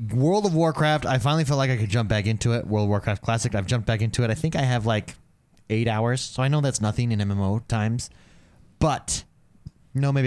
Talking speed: 235 wpm